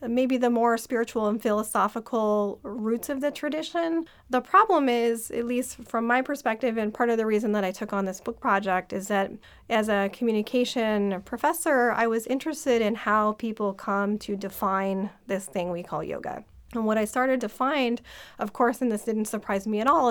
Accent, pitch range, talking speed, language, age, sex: American, 200-240 Hz, 195 wpm, English, 30-49, female